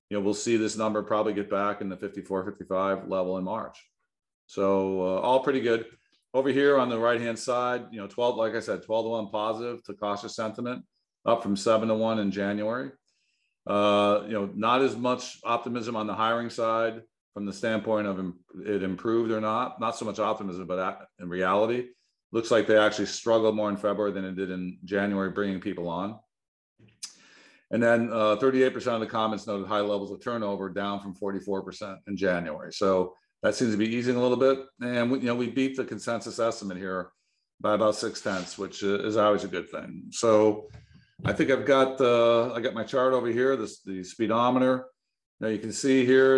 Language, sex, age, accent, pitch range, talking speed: English, male, 40-59, American, 100-120 Hz, 200 wpm